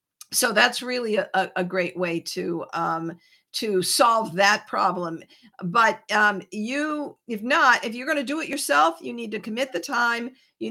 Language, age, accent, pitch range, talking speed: English, 50-69, American, 185-245 Hz, 180 wpm